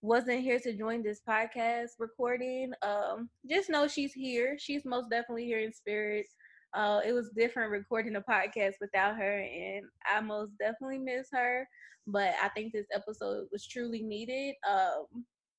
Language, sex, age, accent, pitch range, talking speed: English, female, 20-39, American, 205-235 Hz, 160 wpm